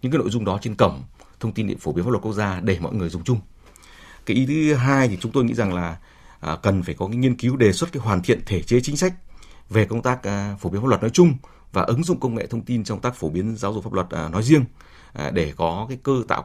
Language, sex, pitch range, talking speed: Vietnamese, male, 90-120 Hz, 280 wpm